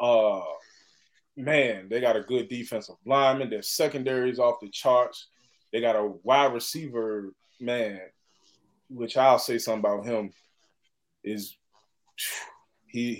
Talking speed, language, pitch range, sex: 125 wpm, English, 110-140 Hz, male